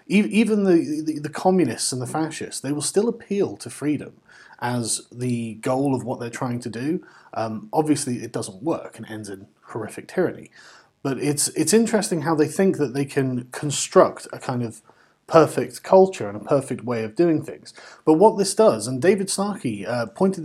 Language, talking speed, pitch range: English, 190 wpm, 125-170 Hz